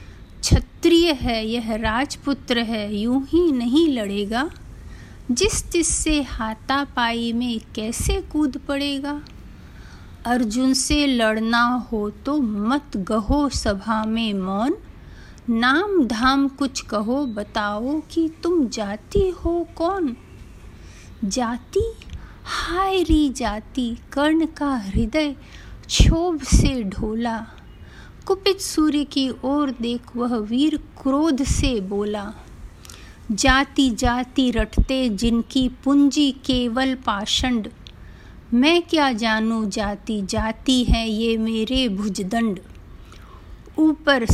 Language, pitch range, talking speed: Hindi, 225-285 Hz, 100 wpm